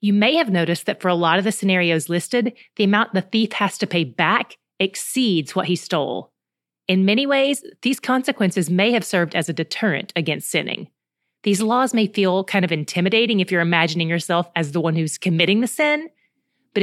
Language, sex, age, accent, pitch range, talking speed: English, female, 30-49, American, 170-220 Hz, 200 wpm